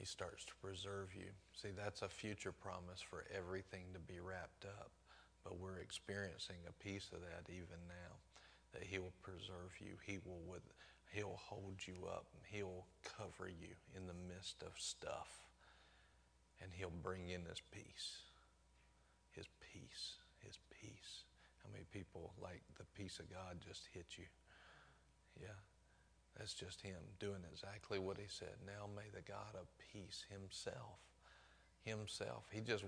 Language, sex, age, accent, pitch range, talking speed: English, male, 40-59, American, 85-100 Hz, 155 wpm